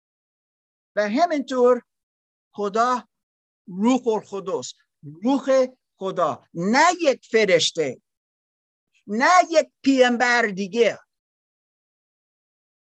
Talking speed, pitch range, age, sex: 70 wpm, 185-250 Hz, 50-69, male